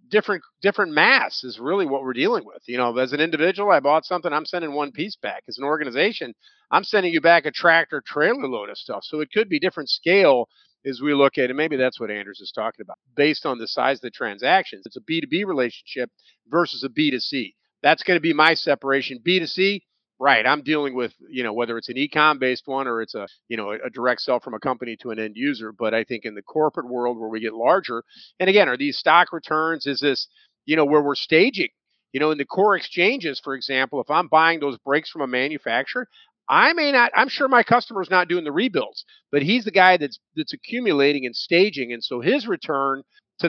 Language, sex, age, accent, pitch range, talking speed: English, male, 50-69, American, 130-175 Hz, 230 wpm